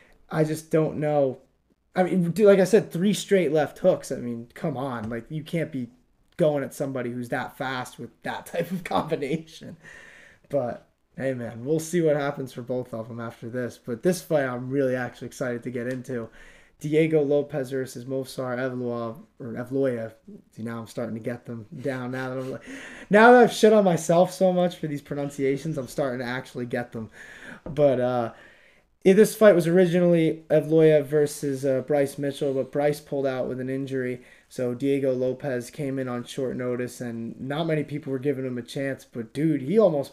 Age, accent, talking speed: 20-39, American, 195 wpm